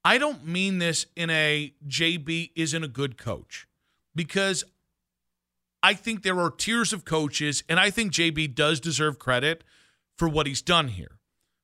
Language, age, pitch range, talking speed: English, 40-59, 135-175 Hz, 160 wpm